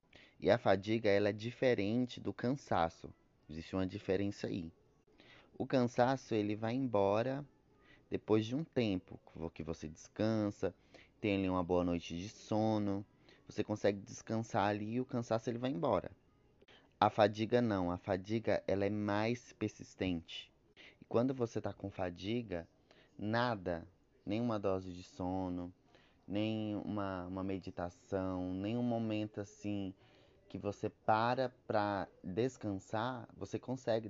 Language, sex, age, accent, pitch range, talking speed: Portuguese, male, 20-39, Brazilian, 95-115 Hz, 130 wpm